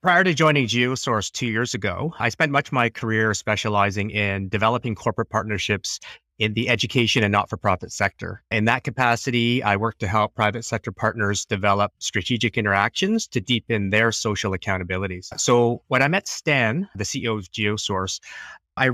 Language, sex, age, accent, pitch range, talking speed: English, male, 30-49, American, 105-120 Hz, 165 wpm